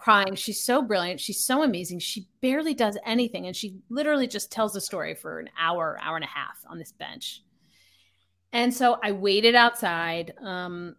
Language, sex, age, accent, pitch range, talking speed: English, female, 30-49, American, 180-215 Hz, 185 wpm